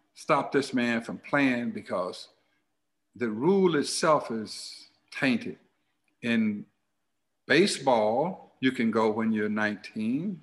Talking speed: 110 wpm